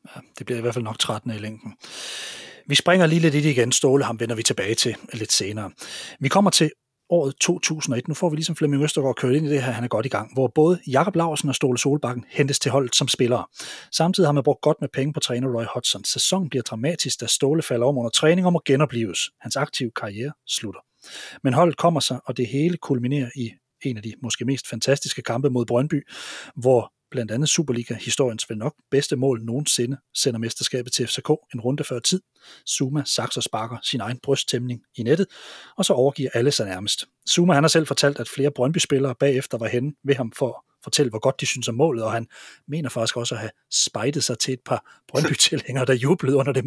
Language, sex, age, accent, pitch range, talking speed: Danish, male, 30-49, native, 125-150 Hz, 225 wpm